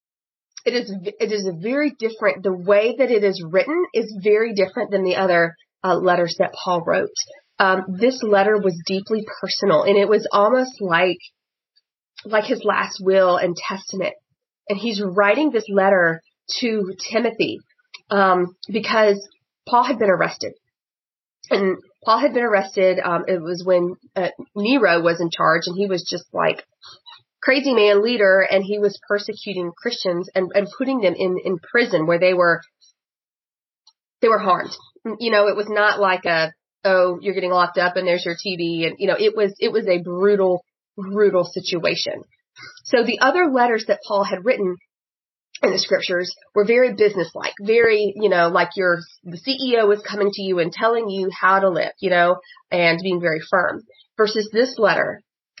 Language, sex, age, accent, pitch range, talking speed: English, female, 30-49, American, 180-220 Hz, 175 wpm